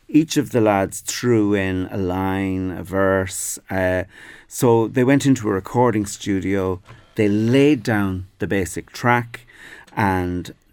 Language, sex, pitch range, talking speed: English, male, 90-115 Hz, 140 wpm